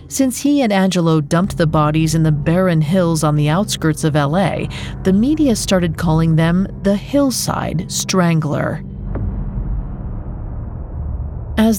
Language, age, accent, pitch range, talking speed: English, 40-59, American, 155-200 Hz, 125 wpm